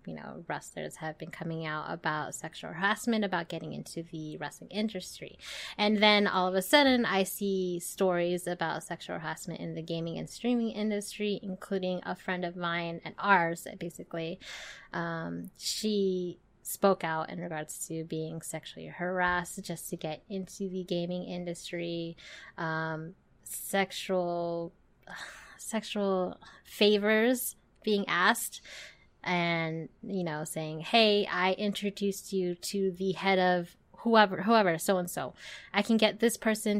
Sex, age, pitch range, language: female, 20-39, 170-210 Hz, English